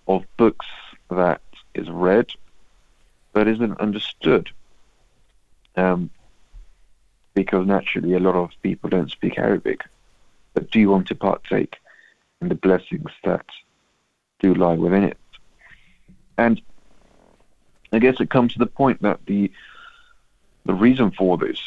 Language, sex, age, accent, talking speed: English, male, 40-59, British, 125 wpm